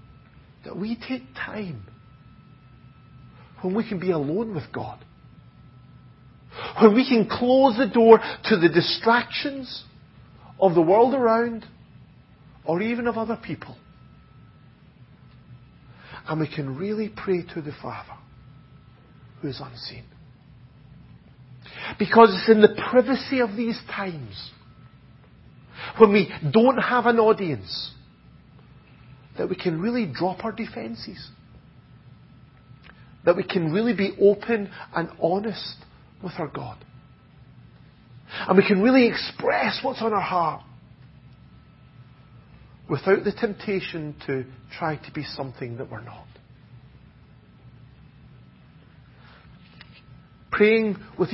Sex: male